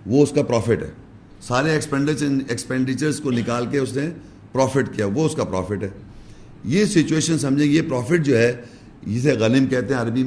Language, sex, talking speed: English, male, 175 wpm